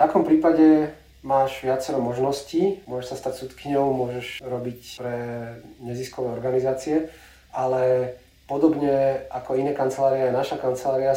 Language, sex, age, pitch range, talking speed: Slovak, male, 30-49, 130-140 Hz, 125 wpm